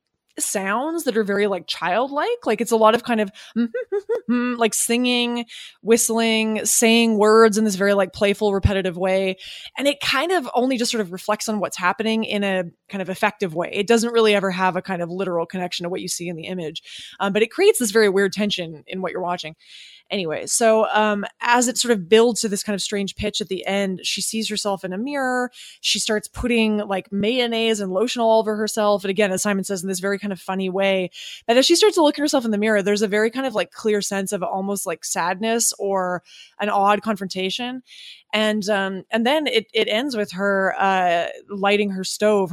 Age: 20-39